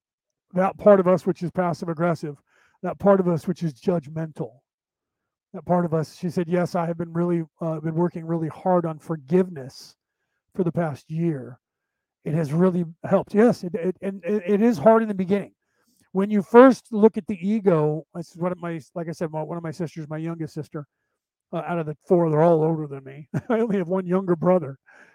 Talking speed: 210 wpm